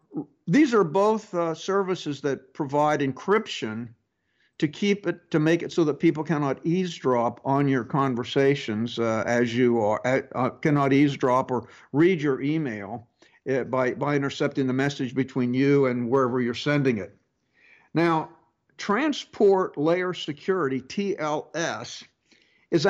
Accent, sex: American, male